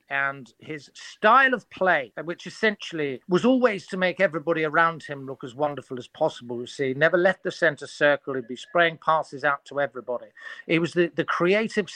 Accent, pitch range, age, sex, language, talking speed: British, 145-190 Hz, 50-69, male, English, 190 wpm